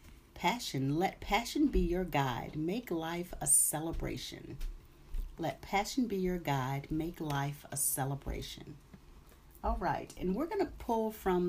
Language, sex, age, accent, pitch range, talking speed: English, female, 40-59, American, 155-215 Hz, 140 wpm